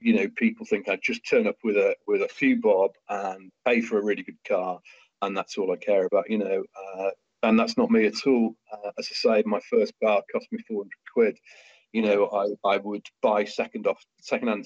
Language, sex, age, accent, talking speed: English, male, 40-59, British, 235 wpm